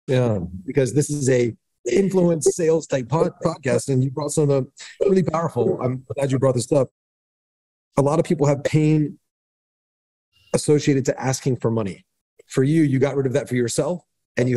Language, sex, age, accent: English, male, 40-59, American